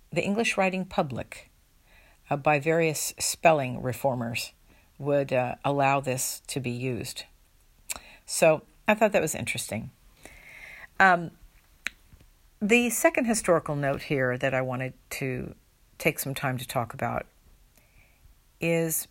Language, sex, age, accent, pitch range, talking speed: English, female, 50-69, American, 135-175 Hz, 120 wpm